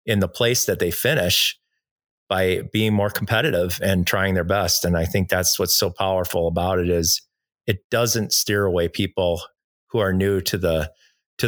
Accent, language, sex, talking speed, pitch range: American, English, male, 185 wpm, 90-115 Hz